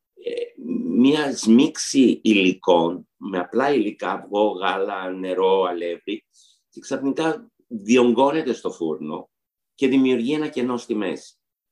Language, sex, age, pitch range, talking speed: Greek, male, 60-79, 95-135 Hz, 110 wpm